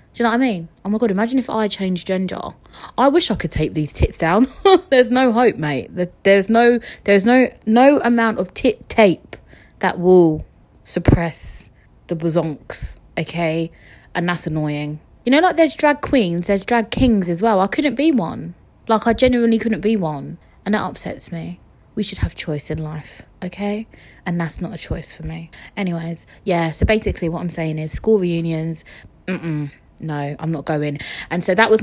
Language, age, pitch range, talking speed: English, 20-39, 165-220 Hz, 190 wpm